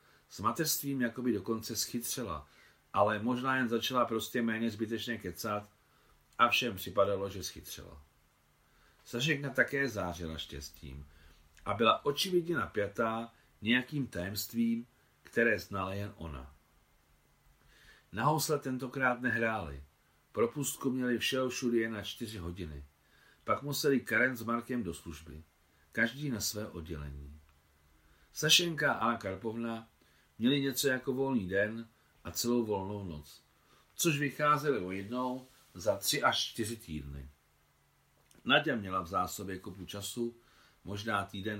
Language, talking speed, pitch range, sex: Czech, 120 wpm, 80-120 Hz, male